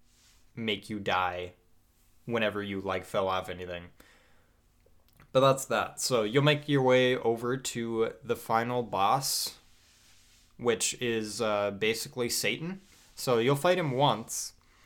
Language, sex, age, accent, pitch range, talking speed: English, male, 20-39, American, 95-130 Hz, 130 wpm